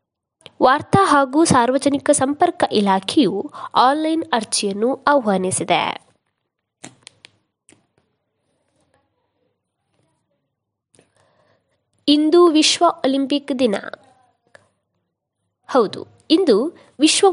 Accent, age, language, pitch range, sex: native, 20-39, Kannada, 225-310 Hz, female